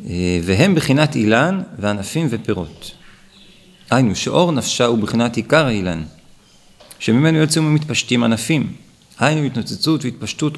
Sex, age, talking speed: male, 40-59, 110 wpm